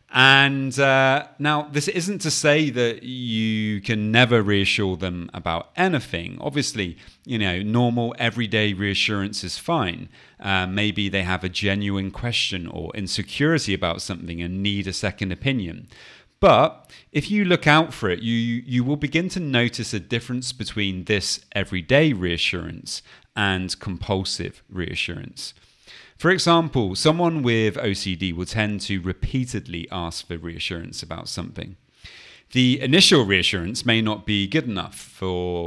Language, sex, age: English, male, 30-49